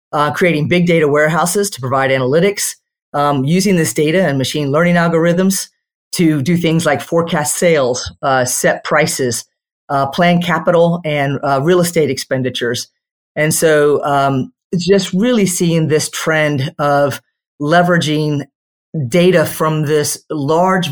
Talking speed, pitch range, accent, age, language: 135 wpm, 145-175 Hz, American, 30-49, English